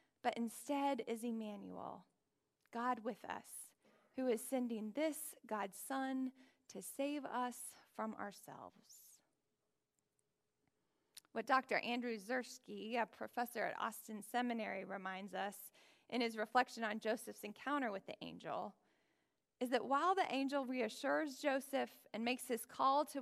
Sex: female